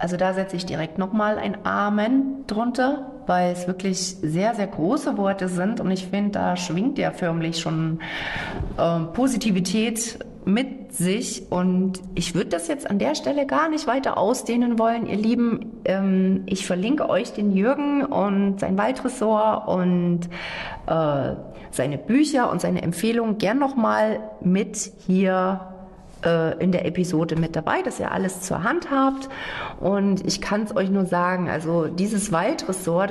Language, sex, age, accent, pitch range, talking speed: German, female, 40-59, German, 185-240 Hz, 155 wpm